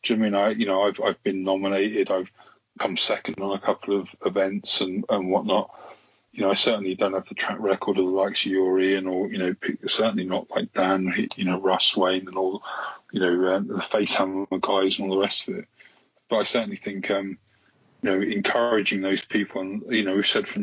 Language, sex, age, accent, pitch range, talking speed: English, male, 20-39, British, 95-105 Hz, 225 wpm